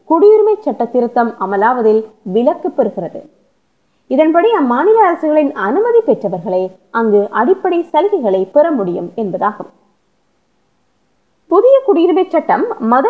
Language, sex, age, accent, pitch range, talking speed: Tamil, female, 20-39, native, 230-360 Hz, 75 wpm